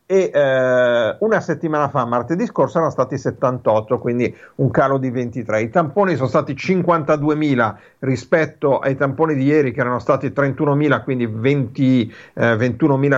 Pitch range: 120-150 Hz